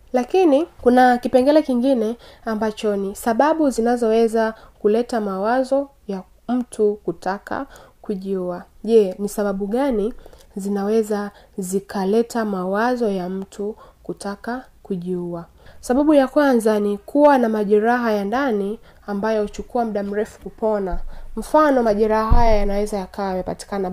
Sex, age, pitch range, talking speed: female, 20-39, 200-240 Hz, 115 wpm